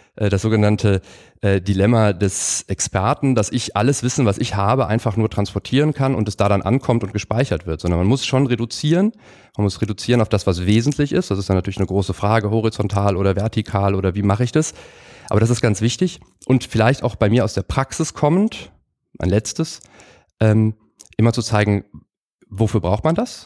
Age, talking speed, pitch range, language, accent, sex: 30-49, 195 wpm, 100-120 Hz, German, German, male